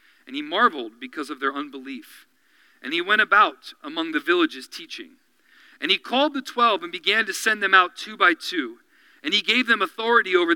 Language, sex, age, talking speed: English, male, 40-59, 200 wpm